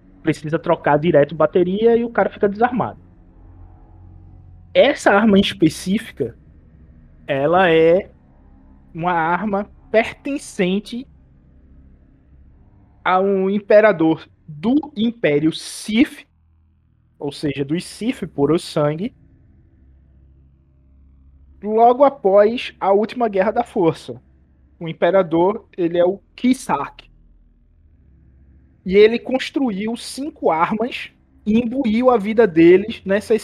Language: Portuguese